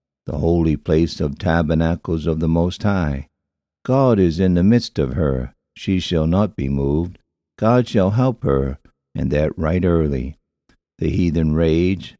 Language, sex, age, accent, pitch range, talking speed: English, male, 60-79, American, 75-95 Hz, 155 wpm